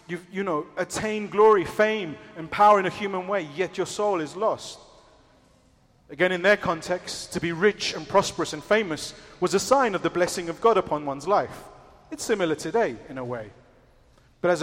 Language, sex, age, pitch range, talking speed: English, male, 30-49, 165-200 Hz, 195 wpm